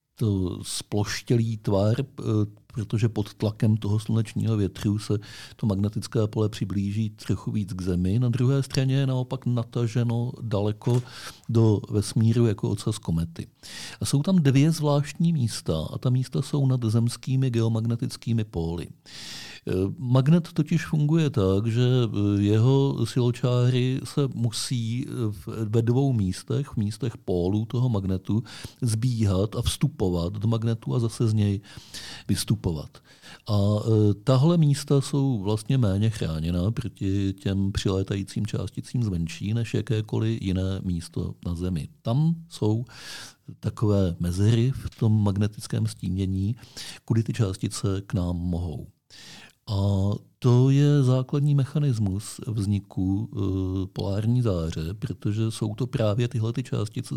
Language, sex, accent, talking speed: Czech, male, native, 125 wpm